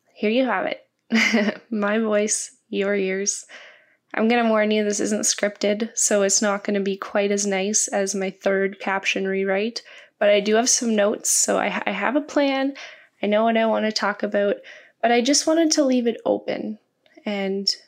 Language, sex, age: English, female, 10-29